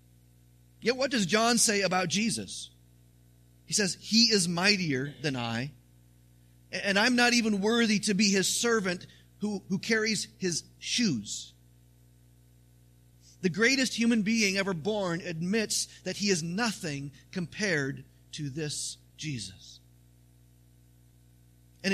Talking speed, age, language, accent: 120 wpm, 40-59, English, American